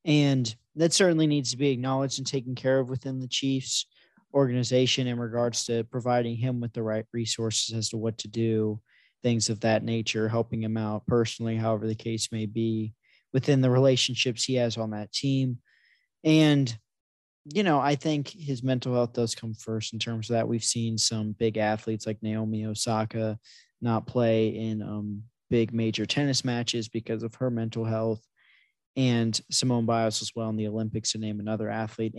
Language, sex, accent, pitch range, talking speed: English, male, American, 110-130 Hz, 185 wpm